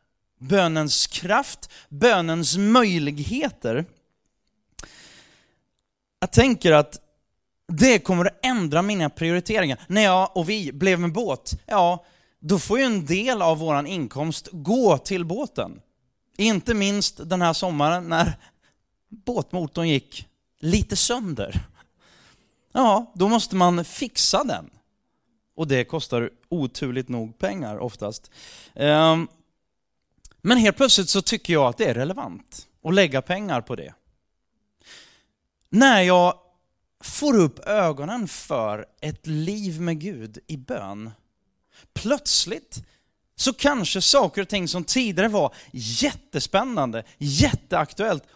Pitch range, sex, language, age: 145-210 Hz, male, Swedish, 20-39